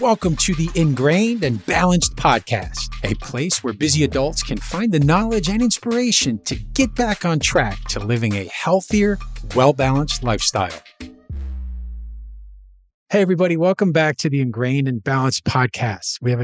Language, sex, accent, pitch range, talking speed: English, male, American, 125-185 Hz, 150 wpm